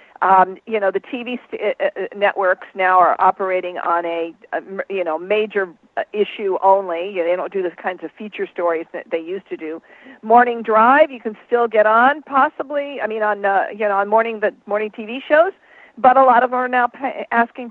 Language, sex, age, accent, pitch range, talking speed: English, female, 50-69, American, 185-260 Hz, 215 wpm